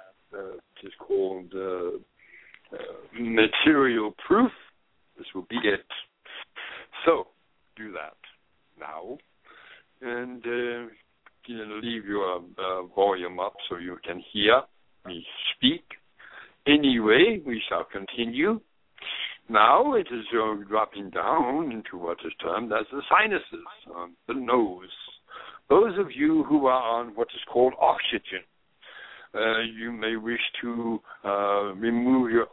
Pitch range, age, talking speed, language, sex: 105-130 Hz, 60-79, 125 wpm, English, male